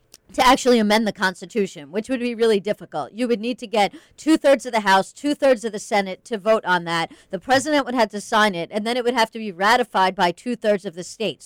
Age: 40-59